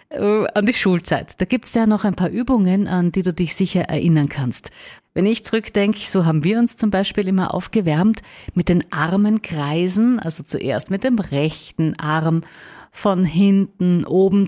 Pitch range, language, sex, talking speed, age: 160-210 Hz, German, female, 165 wpm, 50-69